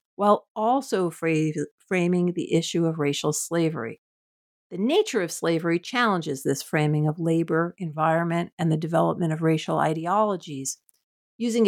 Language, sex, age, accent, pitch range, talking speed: English, female, 50-69, American, 160-205 Hz, 130 wpm